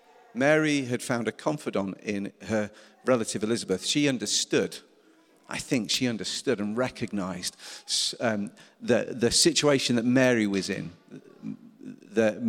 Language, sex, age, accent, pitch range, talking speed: English, male, 50-69, British, 115-150 Hz, 125 wpm